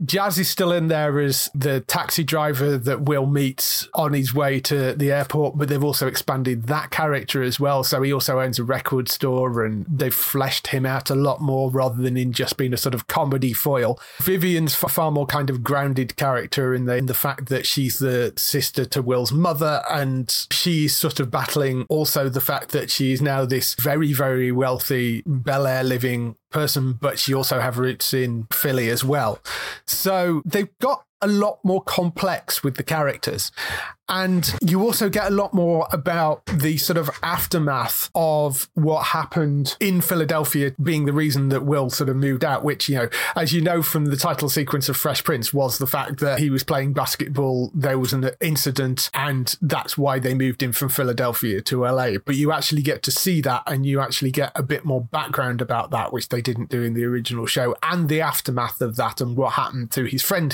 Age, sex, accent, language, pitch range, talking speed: 30-49, male, British, English, 130-155 Hz, 205 wpm